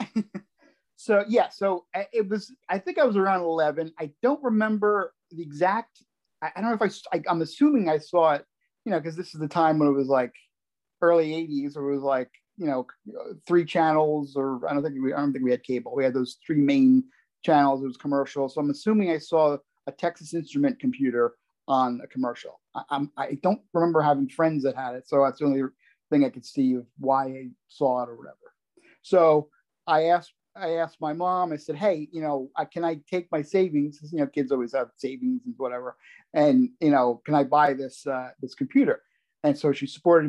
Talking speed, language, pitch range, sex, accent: 215 wpm, English, 135-180 Hz, male, American